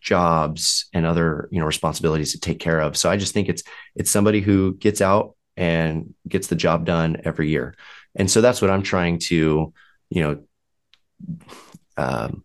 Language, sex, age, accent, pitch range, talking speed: English, male, 30-49, American, 80-95 Hz, 180 wpm